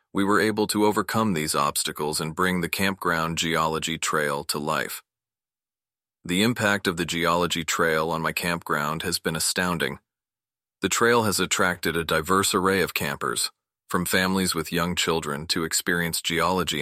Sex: male